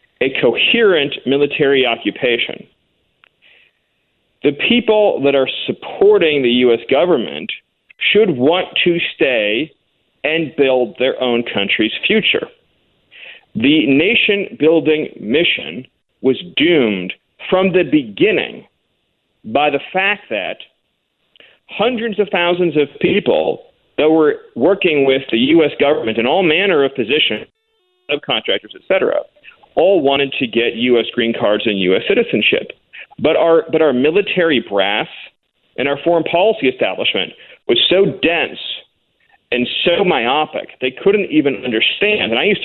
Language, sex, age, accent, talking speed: English, male, 40-59, American, 125 wpm